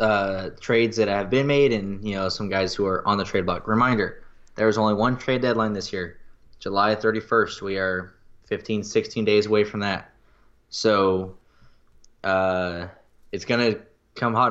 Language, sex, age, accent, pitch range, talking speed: English, male, 10-29, American, 95-120 Hz, 170 wpm